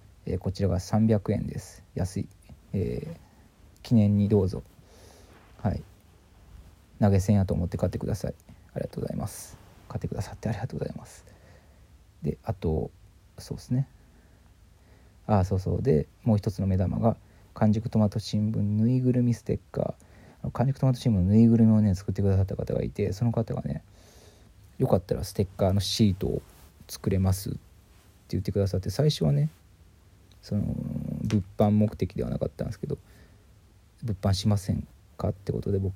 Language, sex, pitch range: Japanese, male, 90-105 Hz